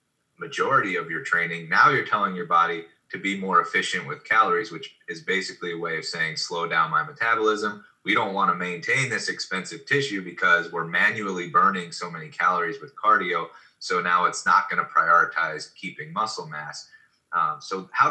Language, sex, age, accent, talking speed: English, male, 30-49, American, 185 wpm